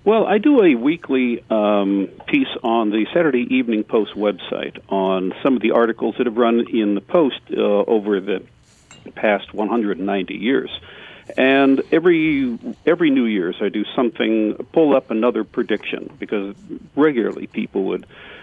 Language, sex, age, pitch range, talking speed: English, male, 50-69, 105-140 Hz, 150 wpm